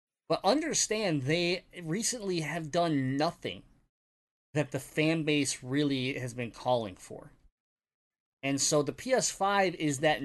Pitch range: 135-175 Hz